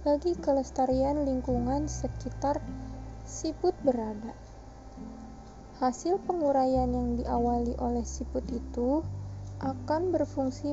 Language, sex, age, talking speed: Indonesian, female, 20-39, 85 wpm